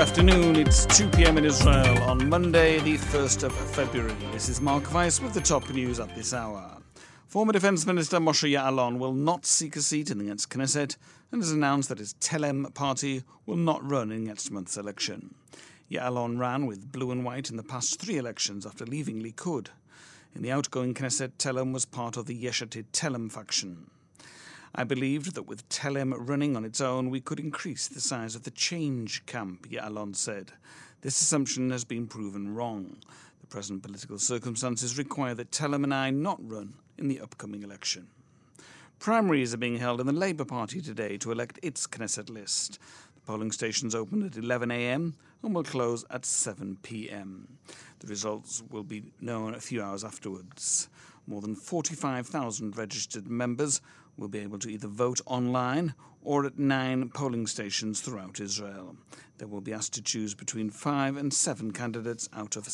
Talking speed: 175 wpm